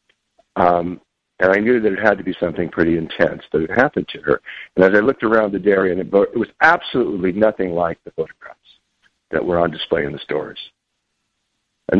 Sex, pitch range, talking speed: male, 85-120 Hz, 210 wpm